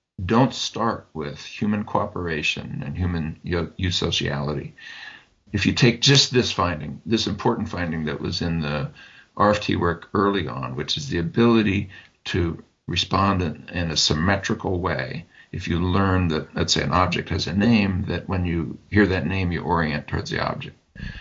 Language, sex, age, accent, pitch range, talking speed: English, male, 50-69, American, 85-105 Hz, 165 wpm